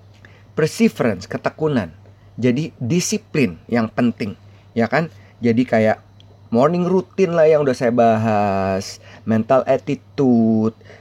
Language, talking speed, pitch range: Indonesian, 105 wpm, 100-125 Hz